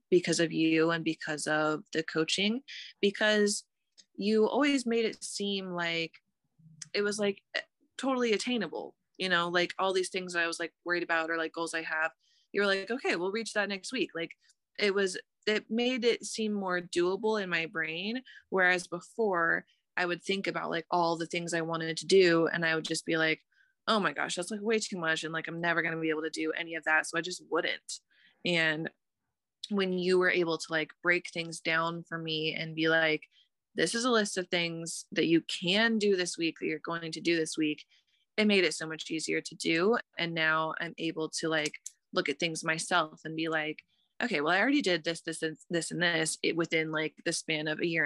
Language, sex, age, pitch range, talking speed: English, female, 20-39, 160-195 Hz, 220 wpm